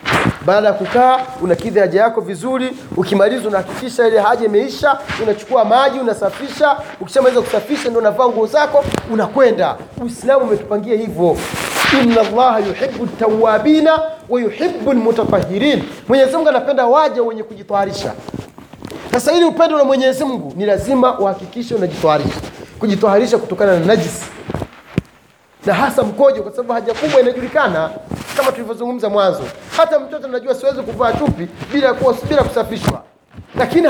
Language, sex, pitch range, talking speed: Swahili, male, 210-275 Hz, 120 wpm